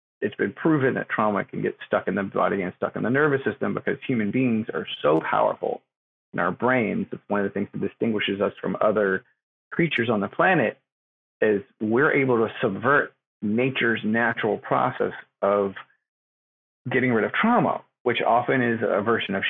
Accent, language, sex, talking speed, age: American, English, male, 180 wpm, 40-59